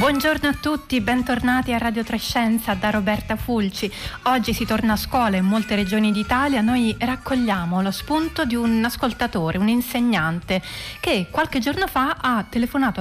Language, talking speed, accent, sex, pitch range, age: Italian, 155 wpm, native, female, 205-255 Hz, 30-49